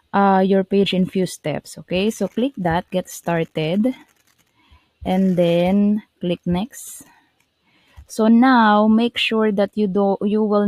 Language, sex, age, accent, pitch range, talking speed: English, female, 20-39, Filipino, 165-200 Hz, 140 wpm